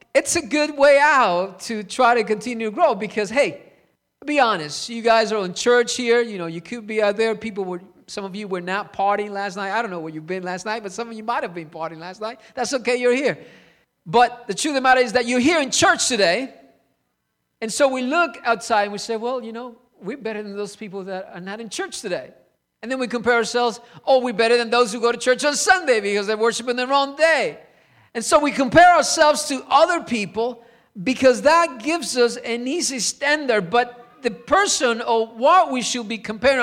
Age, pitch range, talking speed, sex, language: 50-69, 205-260 Hz, 230 wpm, male, English